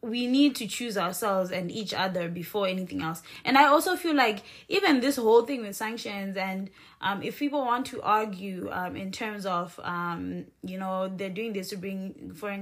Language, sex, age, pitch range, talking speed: English, female, 20-39, 175-220 Hz, 200 wpm